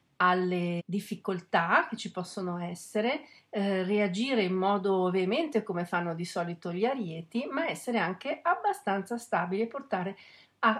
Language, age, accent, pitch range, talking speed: Italian, 40-59, native, 180-220 Hz, 140 wpm